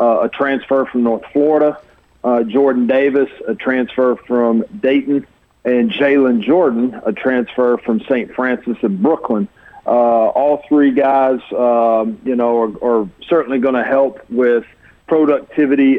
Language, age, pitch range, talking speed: English, 40-59, 120-135 Hz, 145 wpm